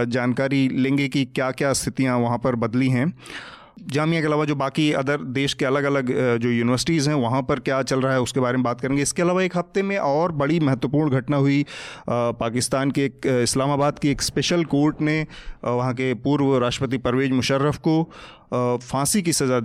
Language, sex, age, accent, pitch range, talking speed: Hindi, male, 30-49, native, 125-145 Hz, 190 wpm